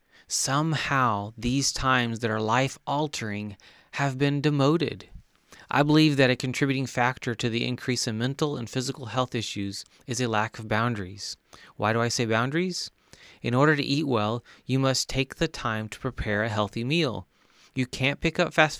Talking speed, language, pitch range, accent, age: 170 wpm, English, 110-130 Hz, American, 30-49